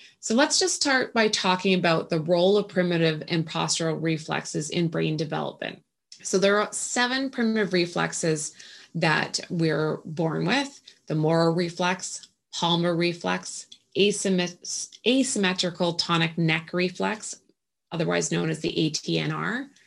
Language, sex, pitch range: English, female, 165-195 Hz